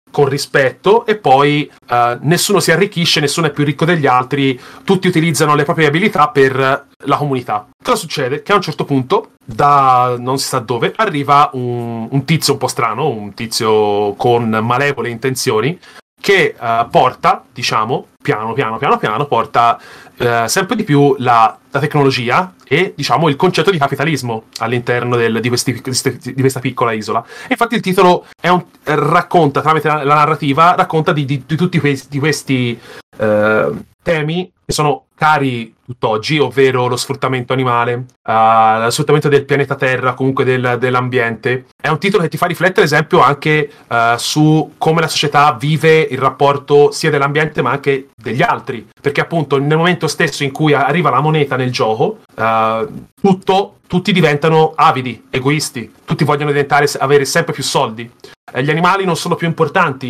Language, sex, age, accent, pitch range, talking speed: Italian, male, 30-49, native, 130-160 Hz, 165 wpm